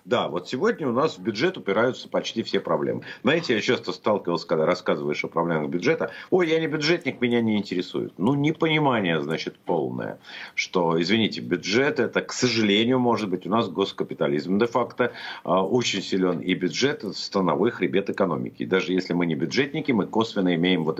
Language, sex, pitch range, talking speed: Russian, male, 90-120 Hz, 170 wpm